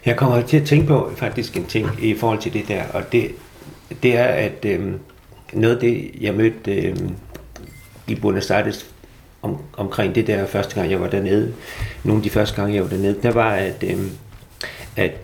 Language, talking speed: Danish, 195 wpm